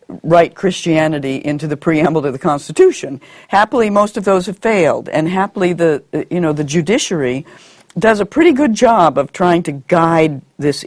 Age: 60-79